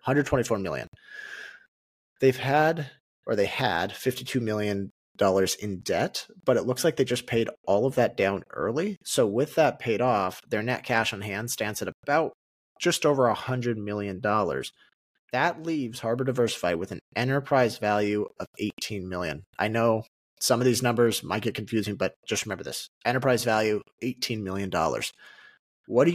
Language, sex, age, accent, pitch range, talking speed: English, male, 30-49, American, 105-145 Hz, 160 wpm